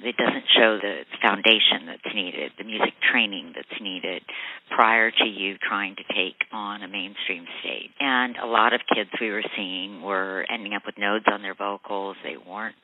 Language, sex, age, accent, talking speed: English, female, 50-69, American, 185 wpm